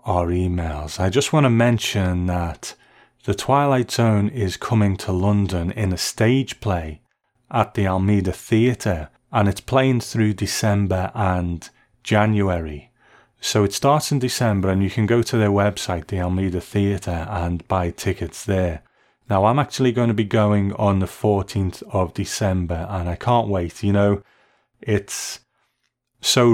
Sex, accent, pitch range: male, British, 90-110 Hz